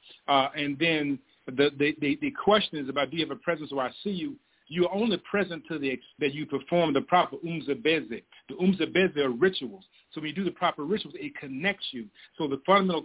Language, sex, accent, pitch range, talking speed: English, male, American, 150-190 Hz, 215 wpm